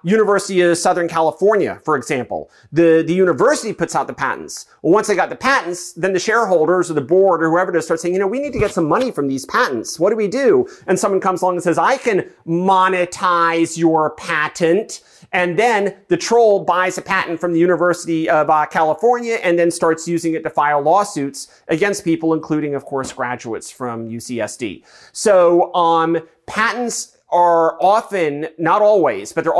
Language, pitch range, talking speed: English, 160-195 Hz, 190 wpm